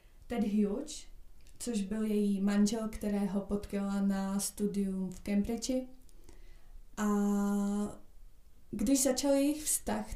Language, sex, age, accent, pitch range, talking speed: Czech, female, 20-39, native, 205-215 Hz, 105 wpm